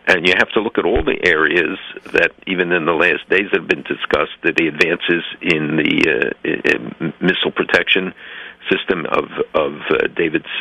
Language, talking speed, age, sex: English, 180 wpm, 60-79, male